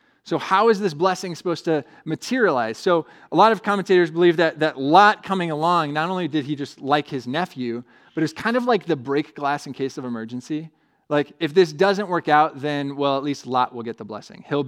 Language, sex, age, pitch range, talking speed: English, male, 20-39, 130-170 Hz, 230 wpm